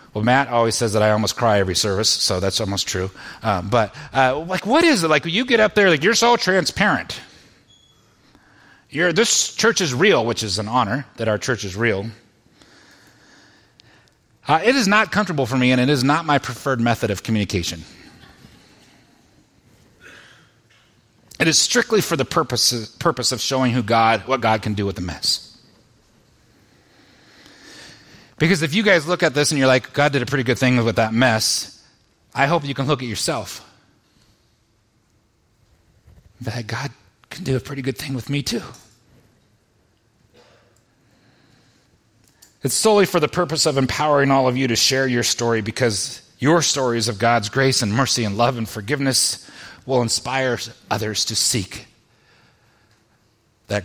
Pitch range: 110-140 Hz